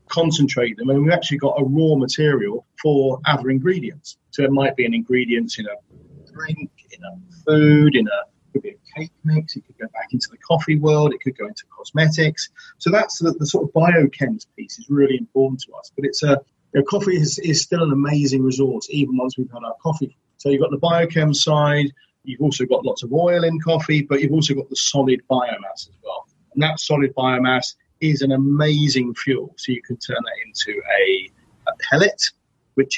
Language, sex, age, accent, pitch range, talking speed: English, male, 30-49, British, 130-155 Hz, 210 wpm